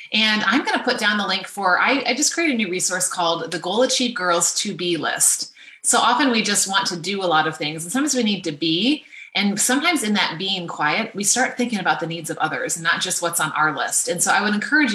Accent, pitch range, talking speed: American, 170-230 Hz, 265 wpm